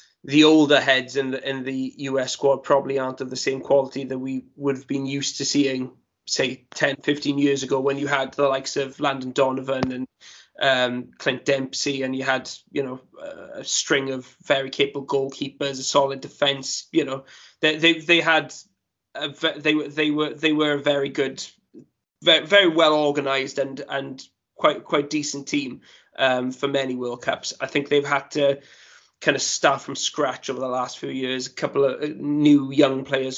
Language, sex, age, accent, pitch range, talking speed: English, male, 20-39, British, 130-145 Hz, 190 wpm